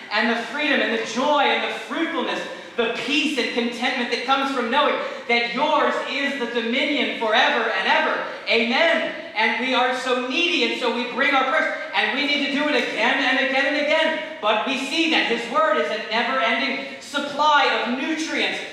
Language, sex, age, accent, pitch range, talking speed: English, male, 40-59, American, 230-280 Hz, 190 wpm